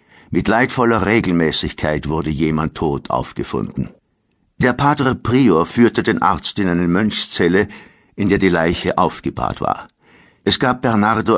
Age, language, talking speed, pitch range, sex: 60-79, German, 130 wpm, 80-100 Hz, male